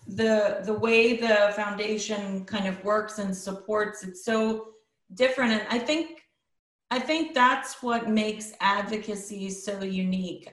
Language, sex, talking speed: English, female, 135 wpm